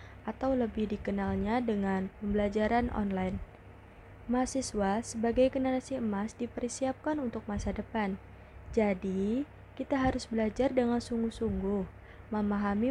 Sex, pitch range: female, 200-240 Hz